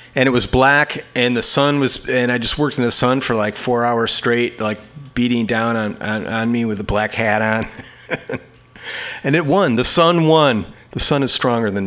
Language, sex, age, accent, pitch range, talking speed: English, male, 30-49, American, 110-145 Hz, 215 wpm